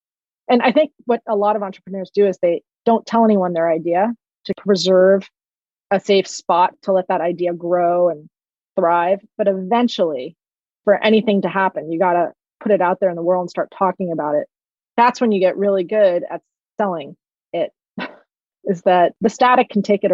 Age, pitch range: 30-49, 180-220 Hz